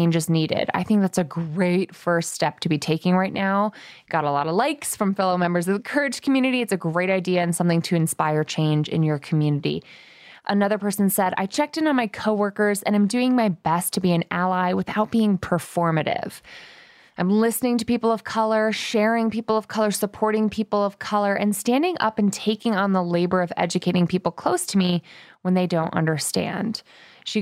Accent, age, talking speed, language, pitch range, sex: American, 20-39, 200 wpm, English, 175-220 Hz, female